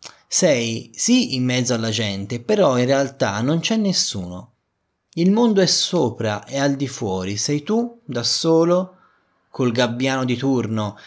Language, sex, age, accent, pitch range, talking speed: Italian, male, 20-39, native, 105-140 Hz, 150 wpm